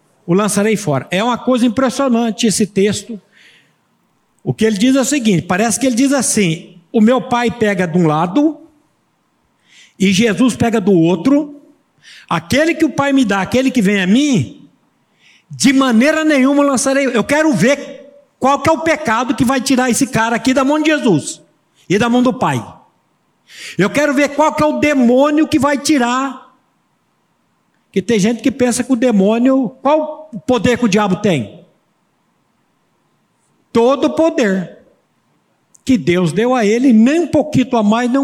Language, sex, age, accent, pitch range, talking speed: Portuguese, male, 60-79, Brazilian, 200-275 Hz, 175 wpm